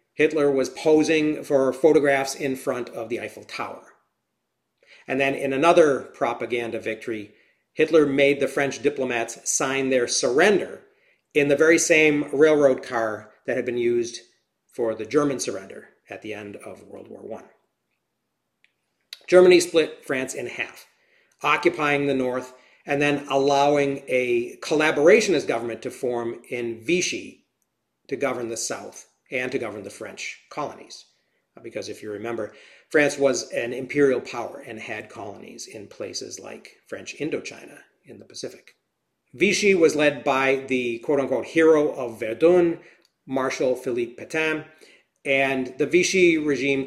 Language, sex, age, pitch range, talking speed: English, male, 40-59, 130-155 Hz, 140 wpm